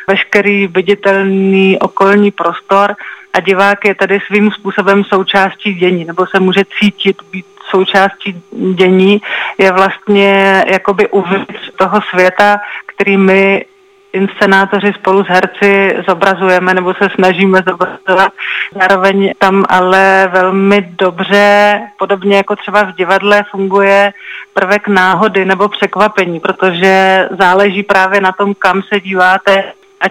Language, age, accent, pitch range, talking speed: Czech, 30-49, native, 190-200 Hz, 120 wpm